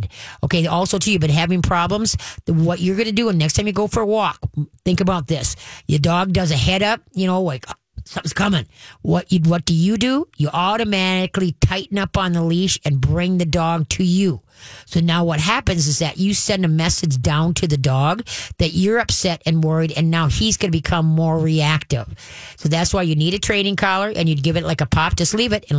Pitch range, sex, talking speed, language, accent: 150-185 Hz, female, 230 wpm, English, American